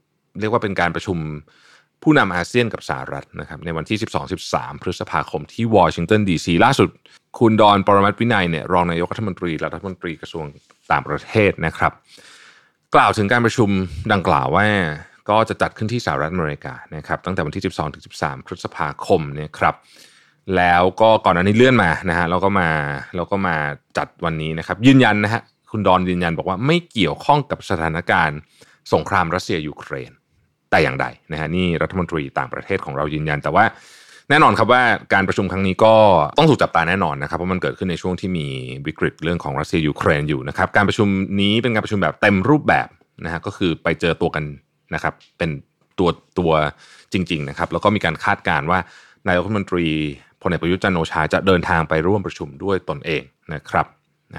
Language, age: Thai, 20-39